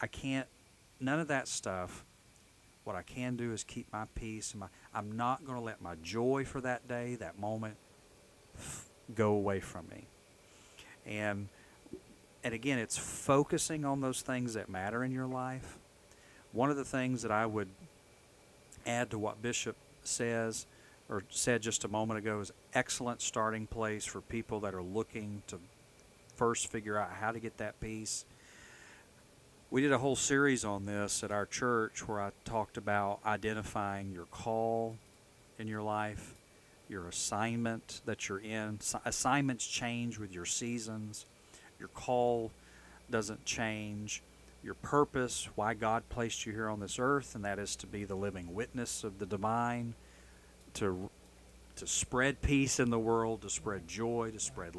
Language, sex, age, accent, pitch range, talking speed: English, male, 40-59, American, 100-120 Hz, 160 wpm